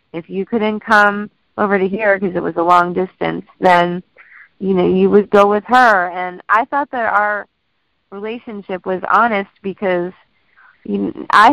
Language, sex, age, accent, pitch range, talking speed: English, female, 30-49, American, 190-230 Hz, 160 wpm